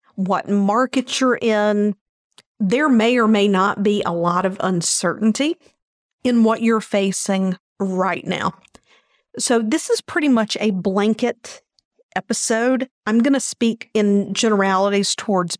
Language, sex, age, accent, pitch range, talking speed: English, female, 50-69, American, 200-240 Hz, 135 wpm